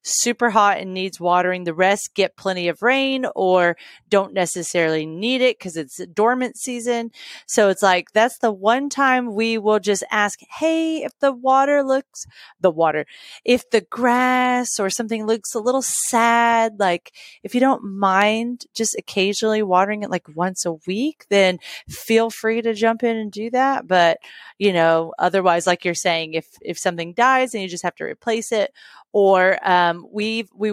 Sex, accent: female, American